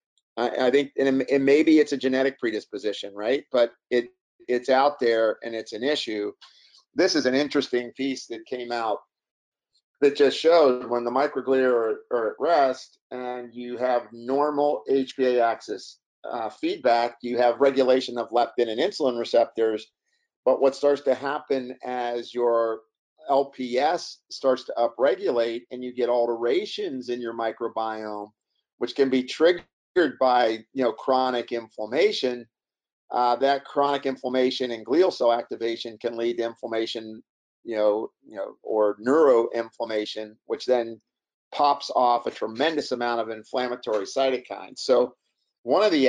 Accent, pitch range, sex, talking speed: American, 115-135 Hz, male, 145 wpm